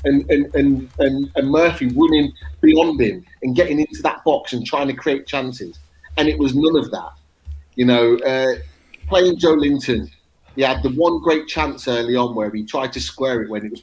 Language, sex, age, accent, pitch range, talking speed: English, male, 30-49, British, 120-165 Hz, 205 wpm